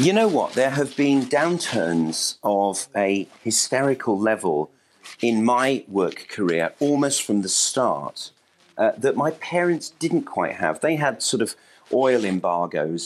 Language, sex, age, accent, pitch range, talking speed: English, male, 40-59, British, 90-125 Hz, 145 wpm